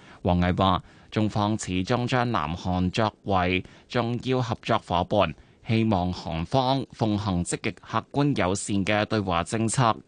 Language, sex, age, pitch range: Chinese, male, 20-39, 95-125 Hz